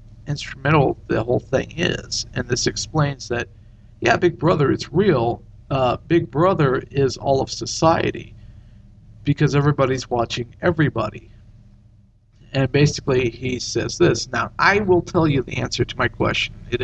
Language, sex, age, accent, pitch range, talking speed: English, male, 50-69, American, 110-150 Hz, 145 wpm